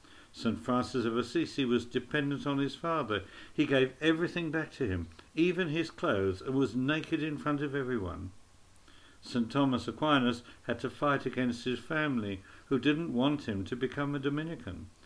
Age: 60-79